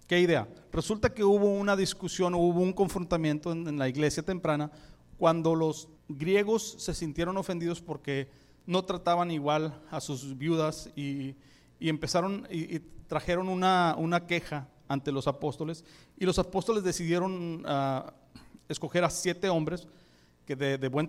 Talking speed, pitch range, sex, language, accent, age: 150 wpm, 150-180 Hz, male, Spanish, Mexican, 40-59